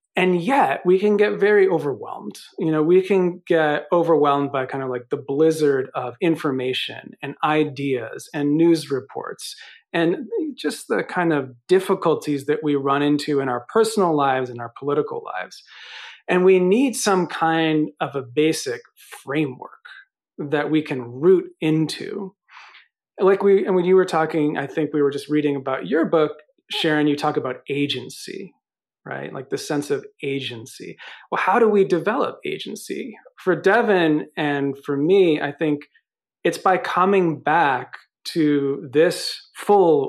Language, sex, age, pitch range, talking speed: English, male, 40-59, 140-185 Hz, 155 wpm